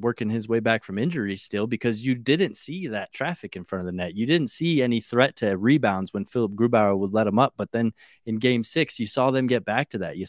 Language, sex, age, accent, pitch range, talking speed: English, male, 20-39, American, 100-120 Hz, 260 wpm